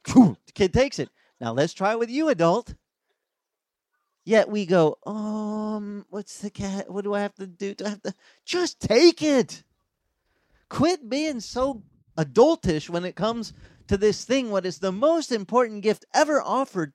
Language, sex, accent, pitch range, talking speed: English, male, American, 155-230 Hz, 175 wpm